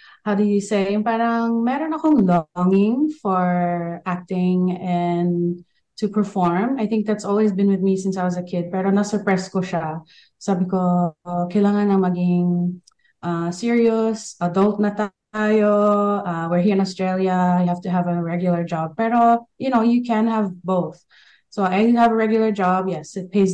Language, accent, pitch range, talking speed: Filipino, native, 175-210 Hz, 170 wpm